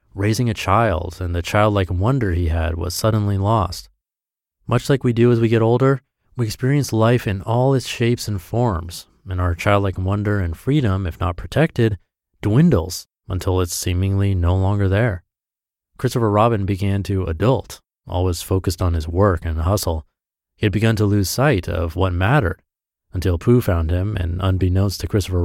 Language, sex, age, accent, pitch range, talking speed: English, male, 30-49, American, 90-115 Hz, 175 wpm